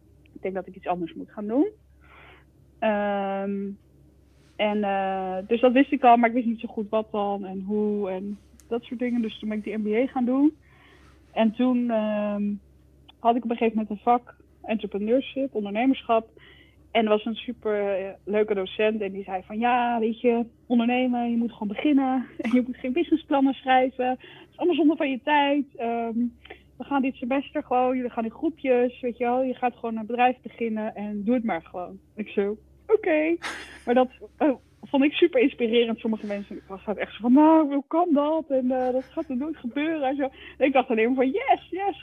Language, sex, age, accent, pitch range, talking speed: Dutch, female, 20-39, Dutch, 205-260 Hz, 210 wpm